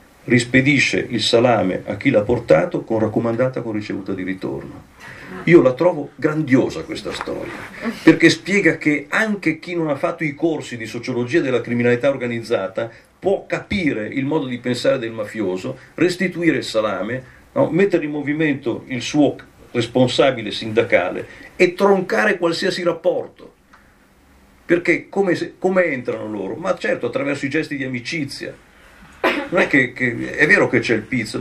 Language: Italian